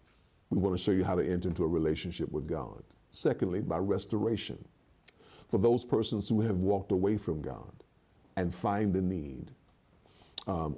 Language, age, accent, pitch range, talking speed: English, 50-69, American, 90-125 Hz, 160 wpm